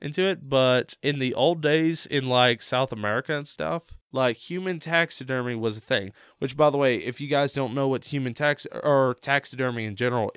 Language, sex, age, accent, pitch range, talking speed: English, male, 20-39, American, 115-145 Hz, 205 wpm